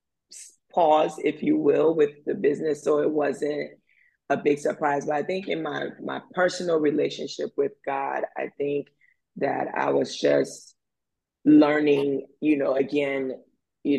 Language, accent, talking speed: English, American, 145 wpm